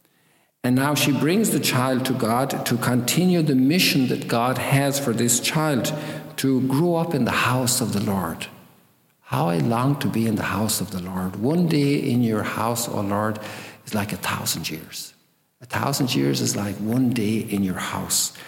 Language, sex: English, male